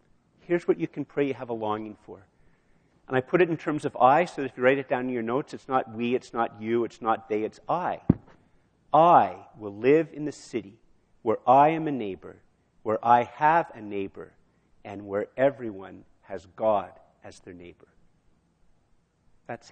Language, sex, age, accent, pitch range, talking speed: English, male, 50-69, American, 110-135 Hz, 190 wpm